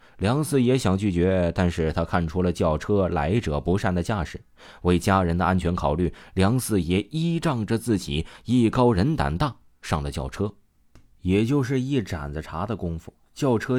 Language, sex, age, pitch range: Chinese, male, 30-49, 80-115 Hz